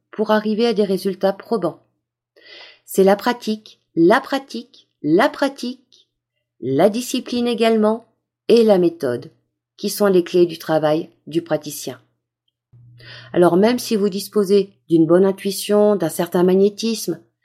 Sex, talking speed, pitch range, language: female, 130 wpm, 170-225 Hz, French